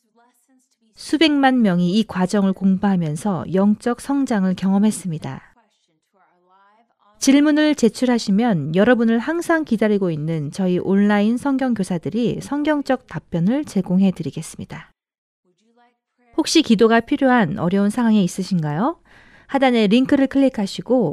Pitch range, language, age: 180-230 Hz, Korean, 40-59